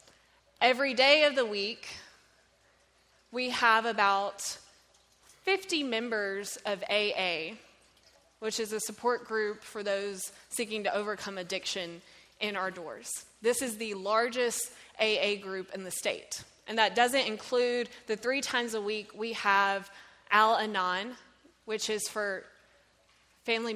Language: English